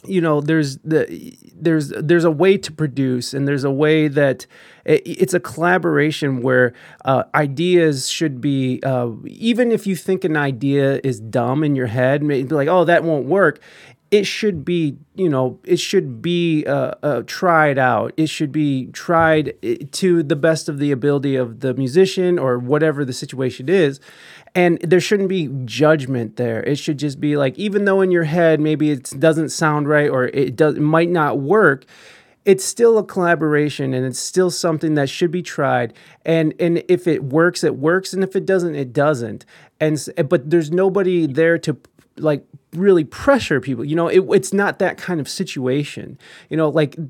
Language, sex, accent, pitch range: English, male, American, 140-175 Hz